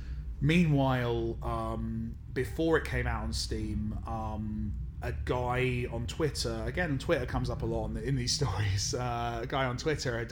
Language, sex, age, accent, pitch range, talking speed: English, male, 30-49, British, 105-125 Hz, 165 wpm